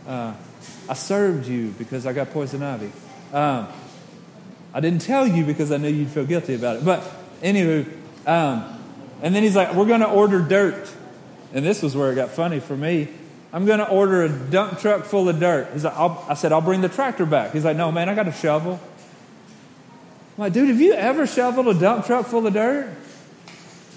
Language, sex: English, male